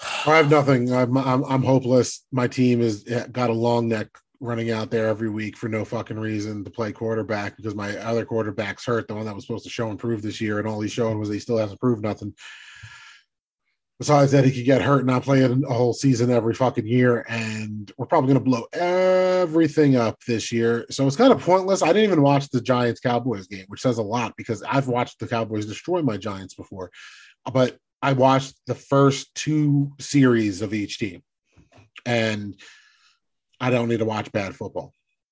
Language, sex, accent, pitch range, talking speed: English, male, American, 115-140 Hz, 205 wpm